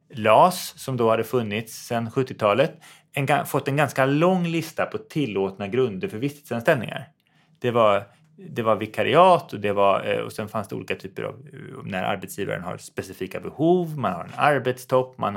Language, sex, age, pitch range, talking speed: Swedish, male, 30-49, 120-165 Hz, 170 wpm